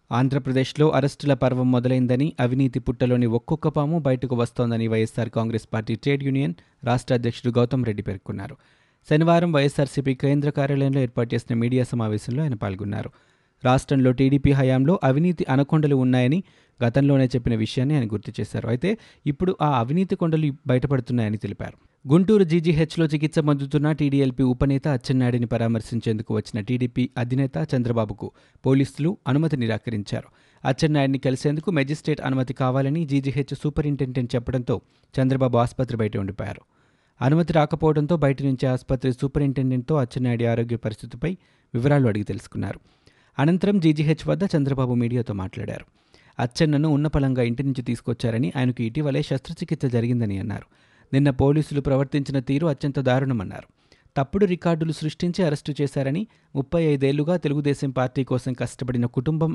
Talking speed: 125 wpm